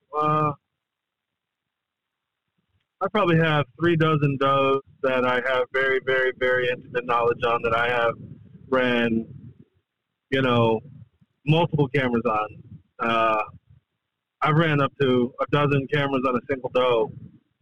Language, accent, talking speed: English, American, 125 wpm